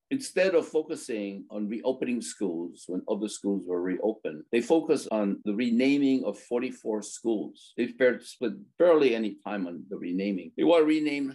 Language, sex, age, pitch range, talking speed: English, male, 60-79, 100-135 Hz, 165 wpm